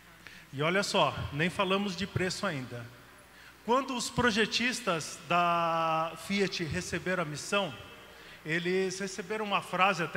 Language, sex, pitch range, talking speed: Portuguese, male, 175-220 Hz, 125 wpm